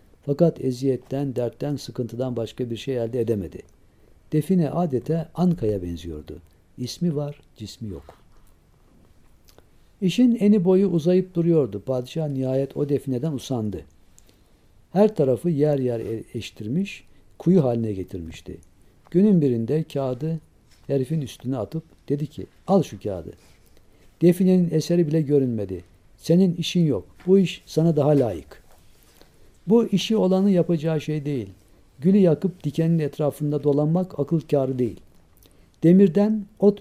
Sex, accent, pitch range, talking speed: male, native, 110-170 Hz, 120 wpm